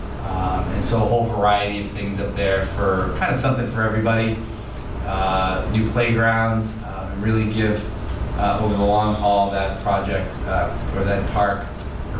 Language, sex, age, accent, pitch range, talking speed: English, male, 30-49, American, 95-115 Hz, 165 wpm